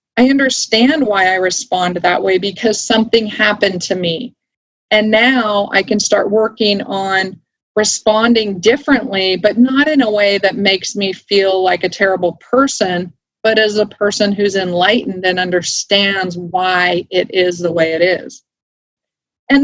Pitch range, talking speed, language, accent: 195-245 Hz, 155 wpm, English, American